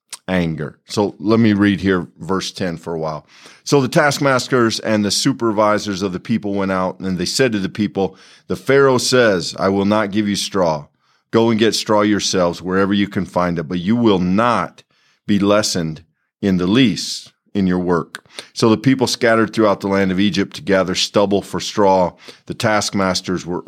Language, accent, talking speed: English, American, 195 wpm